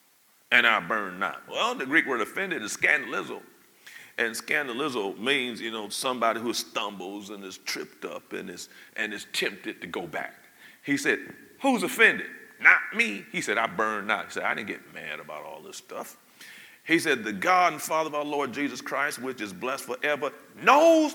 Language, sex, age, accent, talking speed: English, male, 40-59, American, 195 wpm